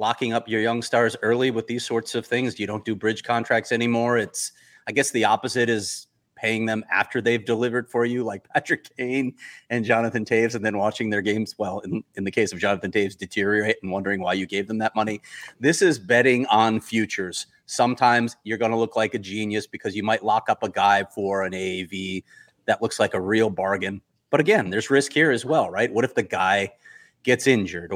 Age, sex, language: 30-49, male, English